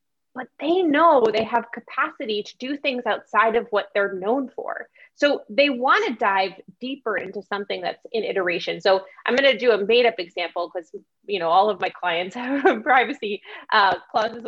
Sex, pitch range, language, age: female, 195-265 Hz, English, 20-39